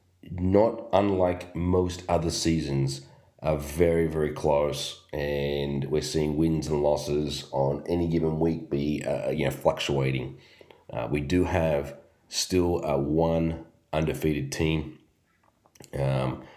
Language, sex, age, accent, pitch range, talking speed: English, male, 30-49, Australian, 70-85 Hz, 125 wpm